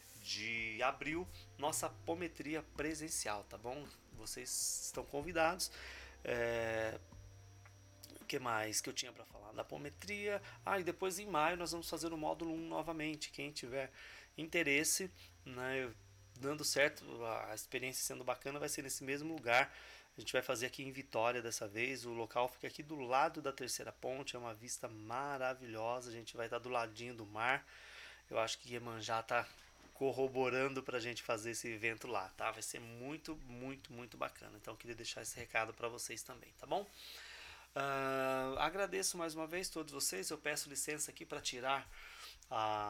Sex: male